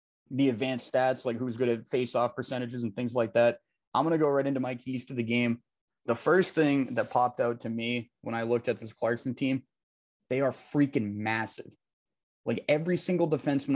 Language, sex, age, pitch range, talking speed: English, male, 20-39, 115-135 Hz, 205 wpm